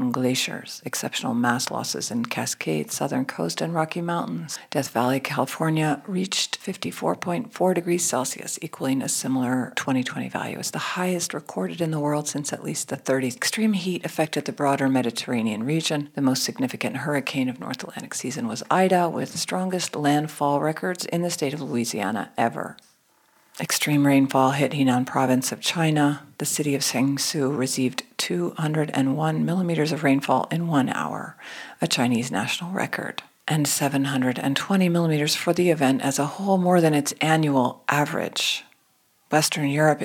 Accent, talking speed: American, 150 wpm